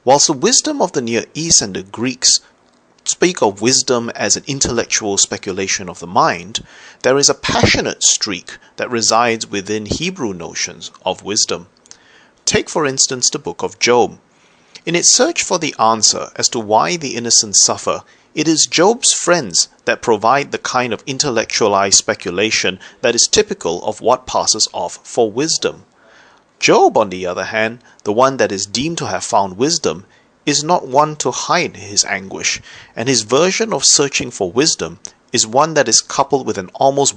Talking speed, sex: 175 wpm, male